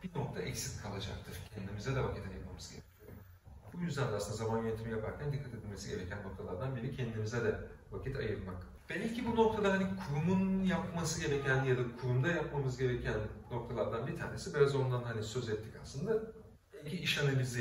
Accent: native